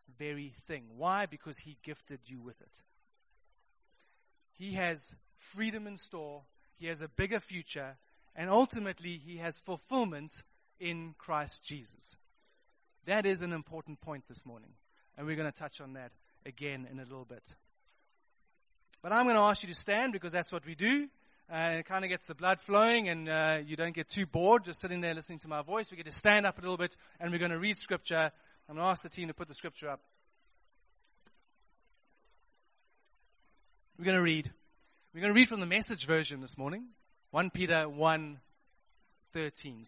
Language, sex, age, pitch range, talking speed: English, male, 30-49, 155-195 Hz, 185 wpm